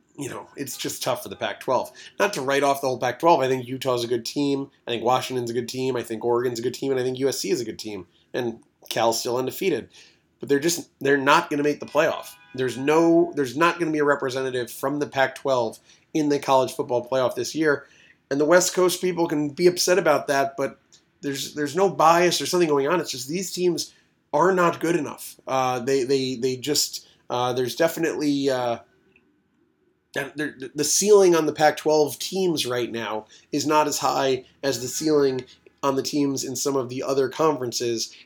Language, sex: English, male